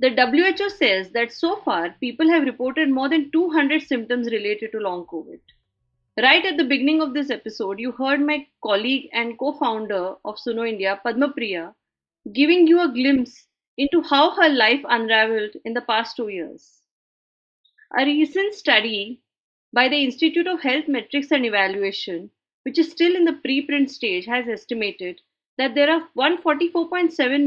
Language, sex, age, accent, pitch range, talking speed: English, female, 30-49, Indian, 225-305 Hz, 160 wpm